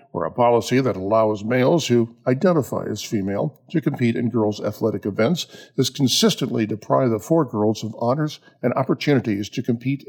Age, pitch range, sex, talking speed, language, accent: 50-69, 110-140 Hz, male, 160 wpm, English, American